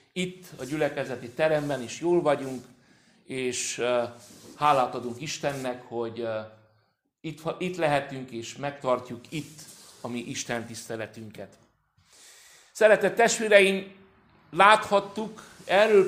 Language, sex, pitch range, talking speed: Hungarian, male, 125-175 Hz, 110 wpm